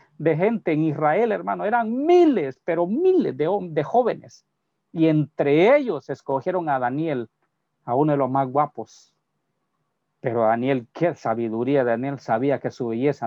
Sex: male